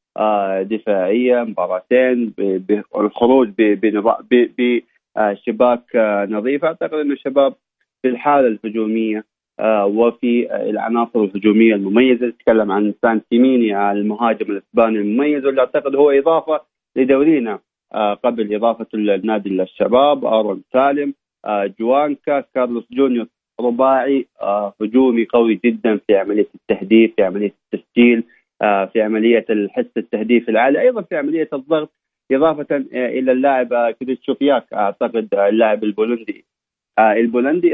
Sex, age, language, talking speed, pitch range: male, 30-49, Arabic, 100 wpm, 105-130 Hz